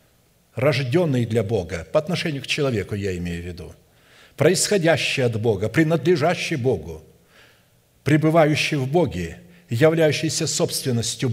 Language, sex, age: Russian, male, 60-79